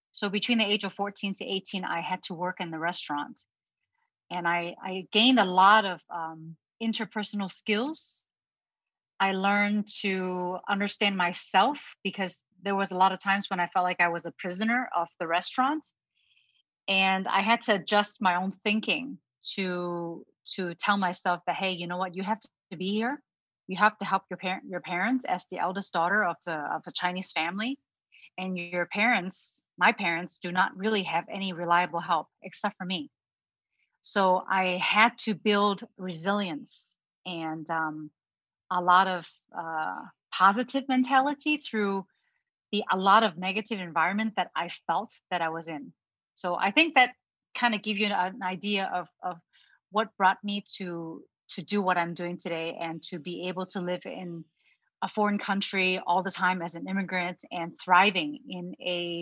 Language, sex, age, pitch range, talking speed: English, female, 30-49, 175-210 Hz, 175 wpm